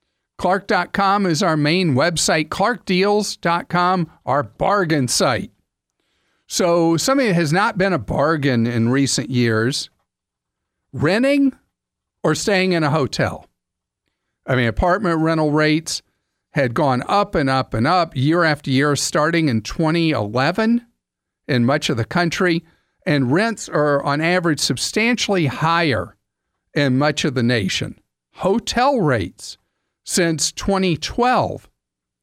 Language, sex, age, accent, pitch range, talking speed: English, male, 50-69, American, 135-180 Hz, 120 wpm